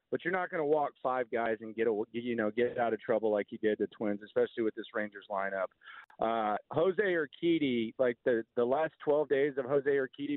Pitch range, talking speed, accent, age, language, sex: 125-165 Hz, 215 wpm, American, 40-59, English, male